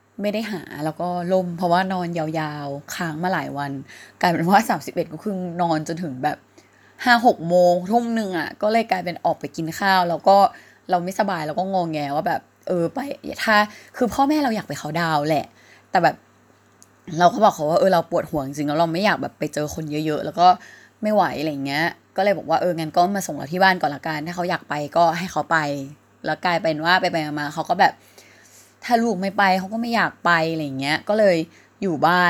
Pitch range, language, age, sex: 155-195 Hz, Thai, 20-39, female